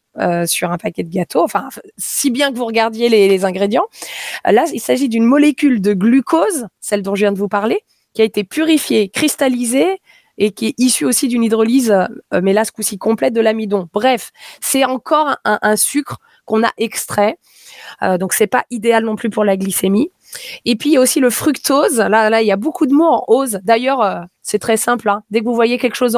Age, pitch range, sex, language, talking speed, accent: 20-39, 200-245 Hz, female, French, 220 wpm, French